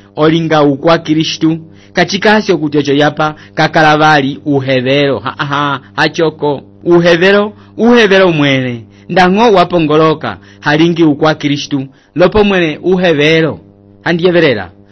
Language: English